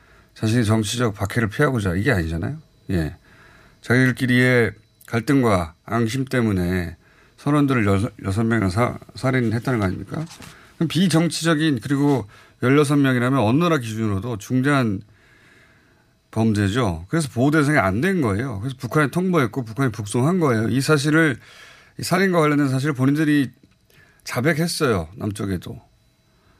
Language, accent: Korean, native